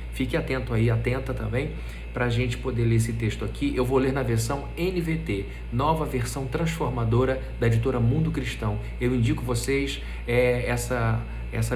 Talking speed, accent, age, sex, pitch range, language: 160 wpm, Brazilian, 40-59, male, 110-140 Hz, Portuguese